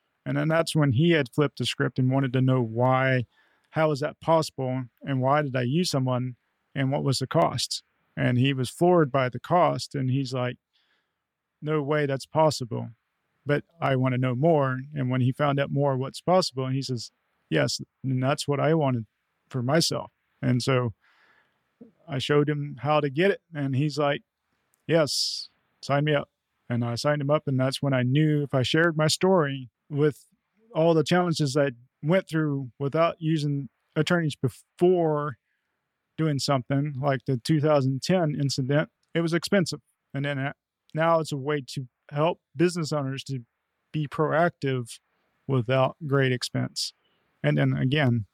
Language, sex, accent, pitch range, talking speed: English, male, American, 130-155 Hz, 170 wpm